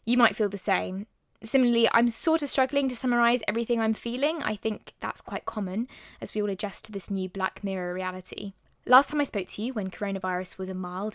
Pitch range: 185-225 Hz